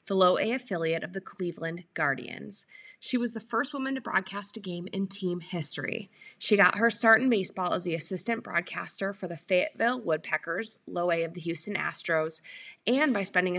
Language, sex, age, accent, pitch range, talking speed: English, female, 20-39, American, 175-230 Hz, 180 wpm